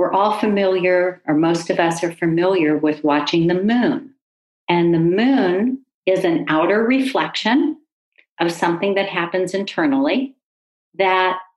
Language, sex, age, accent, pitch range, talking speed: English, female, 40-59, American, 165-260 Hz, 135 wpm